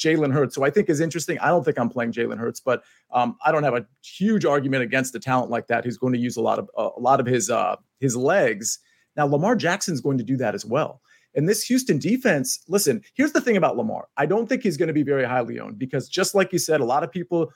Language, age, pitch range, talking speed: English, 40-59, 130-175 Hz, 275 wpm